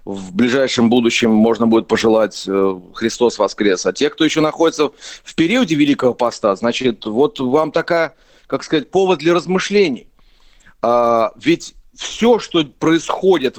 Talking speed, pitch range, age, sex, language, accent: 135 wpm, 120-185 Hz, 40-59, male, Ukrainian, native